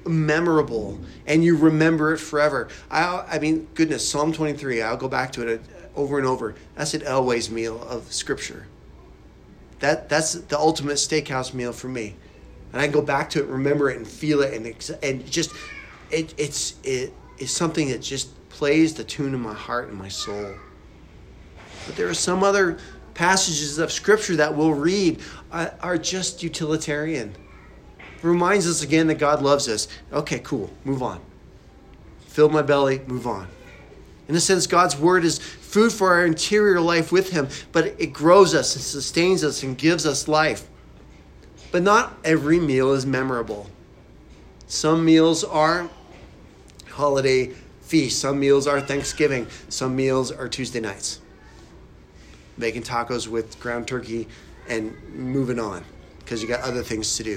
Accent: American